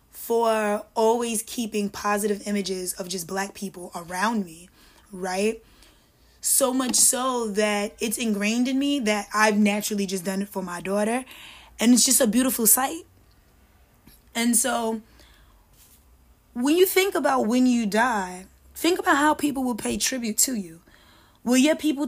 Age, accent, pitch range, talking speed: 10-29, American, 200-260 Hz, 150 wpm